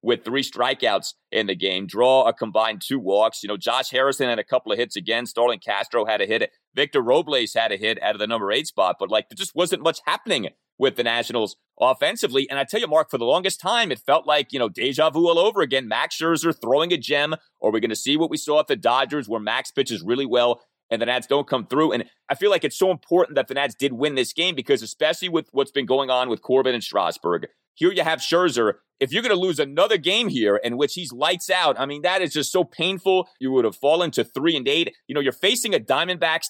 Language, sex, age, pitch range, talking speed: English, male, 30-49, 135-195 Hz, 260 wpm